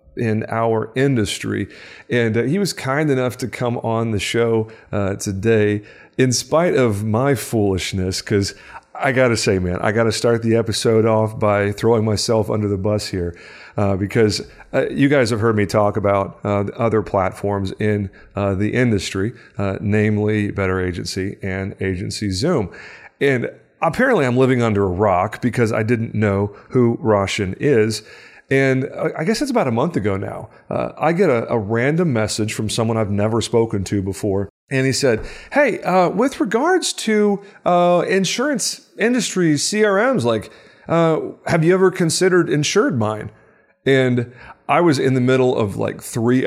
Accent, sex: American, male